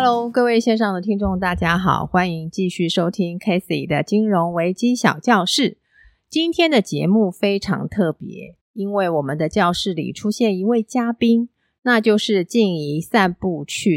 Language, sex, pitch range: Chinese, female, 165-225 Hz